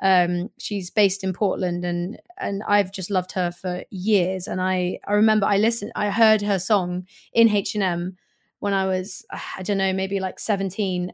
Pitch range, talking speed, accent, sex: 190-215 Hz, 185 wpm, British, female